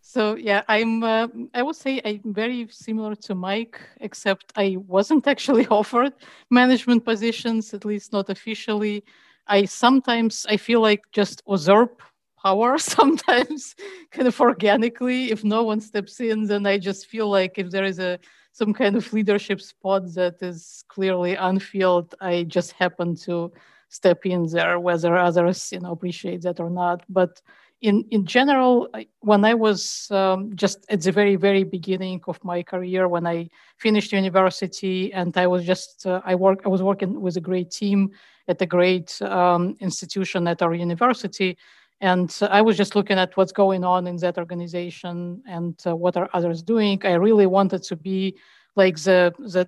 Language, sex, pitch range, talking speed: English, female, 180-220 Hz, 170 wpm